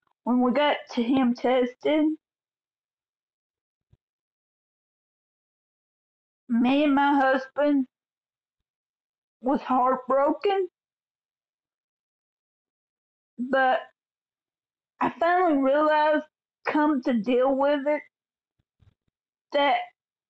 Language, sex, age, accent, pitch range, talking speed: English, female, 40-59, American, 255-305 Hz, 65 wpm